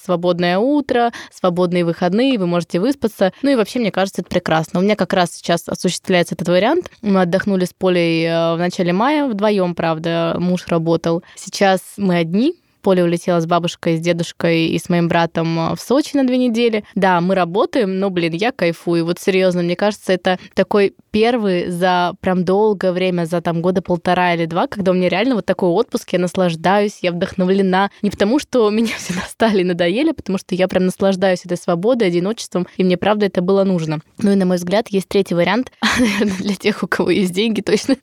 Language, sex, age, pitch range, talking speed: Russian, female, 20-39, 180-220 Hz, 195 wpm